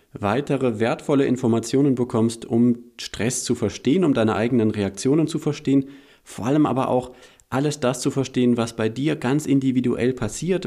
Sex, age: male, 40-59